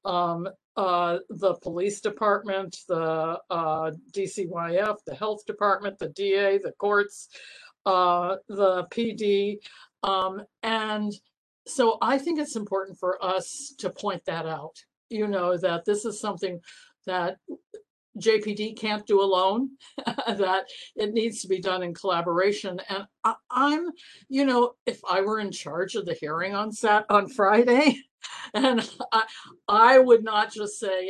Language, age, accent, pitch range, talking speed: English, 60-79, American, 185-225 Hz, 140 wpm